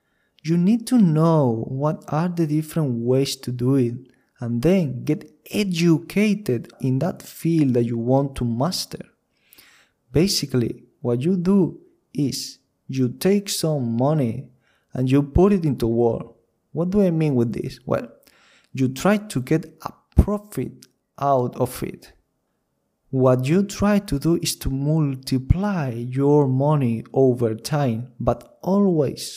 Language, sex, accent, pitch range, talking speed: English, male, Spanish, 125-170 Hz, 140 wpm